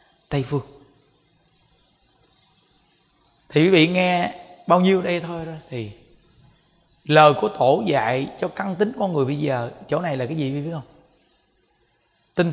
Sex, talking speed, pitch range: male, 150 wpm, 140-175 Hz